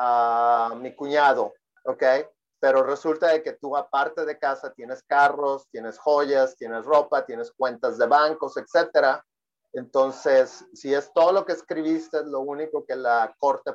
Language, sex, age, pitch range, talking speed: Spanish, male, 40-59, 130-160 Hz, 155 wpm